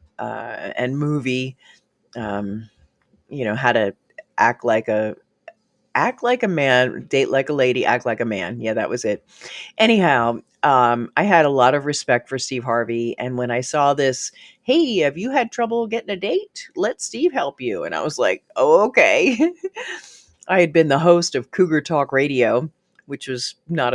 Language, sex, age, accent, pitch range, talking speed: English, female, 40-59, American, 120-185 Hz, 185 wpm